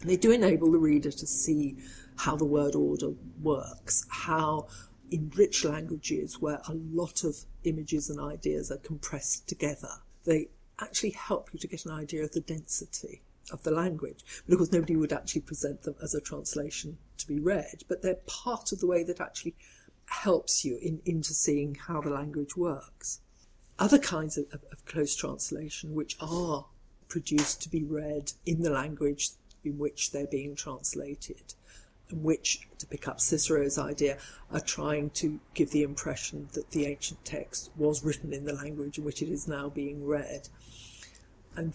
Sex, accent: female, British